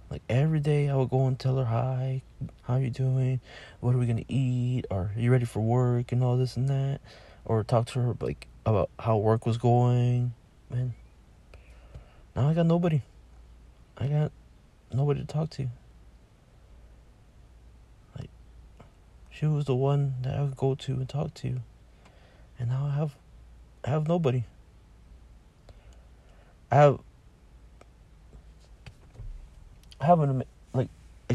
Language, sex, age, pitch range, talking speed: English, male, 20-39, 90-130 Hz, 150 wpm